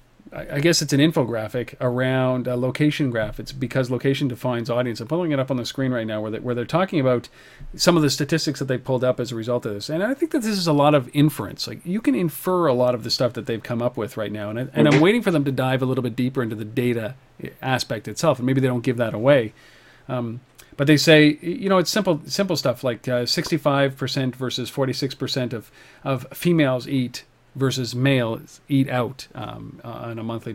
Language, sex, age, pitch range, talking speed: English, male, 40-59, 125-150 Hz, 230 wpm